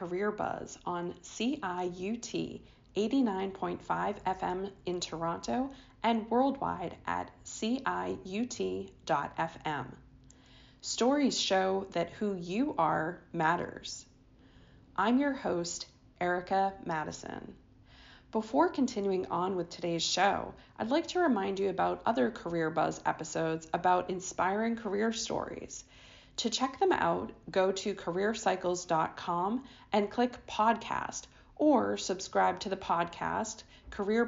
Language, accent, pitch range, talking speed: English, American, 170-225 Hz, 105 wpm